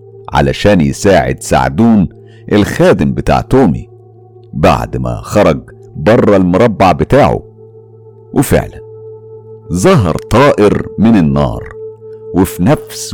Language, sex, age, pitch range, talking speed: Arabic, male, 50-69, 85-115 Hz, 85 wpm